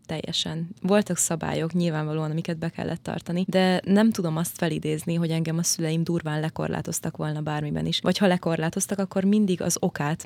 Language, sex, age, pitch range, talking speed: Hungarian, female, 20-39, 165-195 Hz, 170 wpm